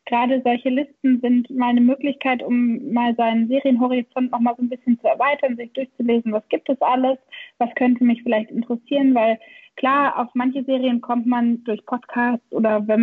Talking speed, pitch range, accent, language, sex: 185 wpm, 225-275 Hz, German, German, female